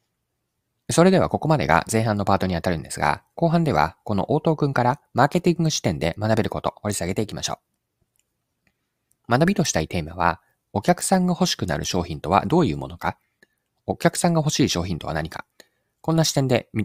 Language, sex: Japanese, male